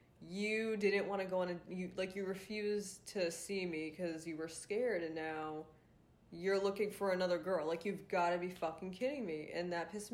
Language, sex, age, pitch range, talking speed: English, female, 20-39, 160-200 Hz, 215 wpm